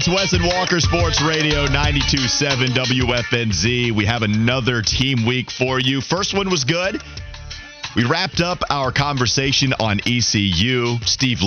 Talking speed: 135 wpm